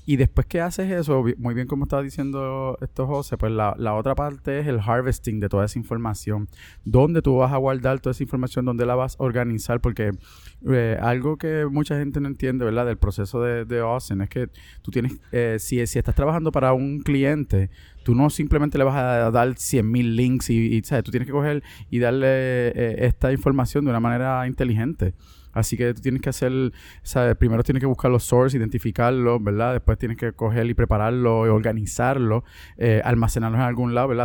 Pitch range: 115-135 Hz